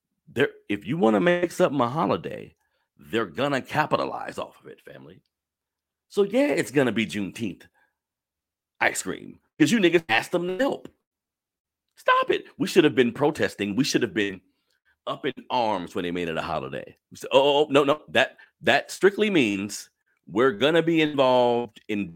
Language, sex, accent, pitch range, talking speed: English, male, American, 95-160 Hz, 180 wpm